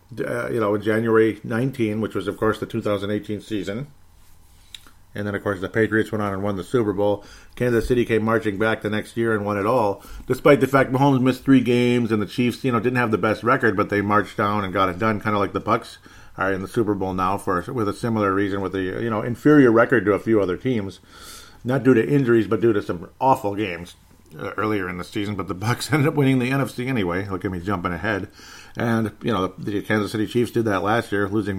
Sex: male